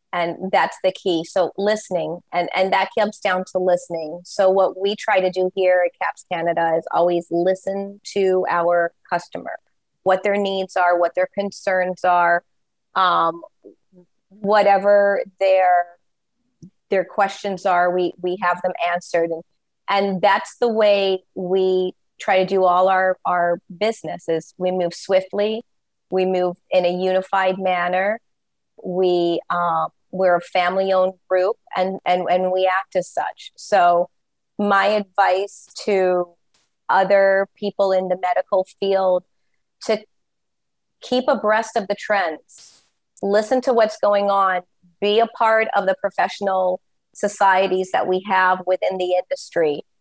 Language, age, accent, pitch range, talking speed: English, 30-49, American, 180-200 Hz, 140 wpm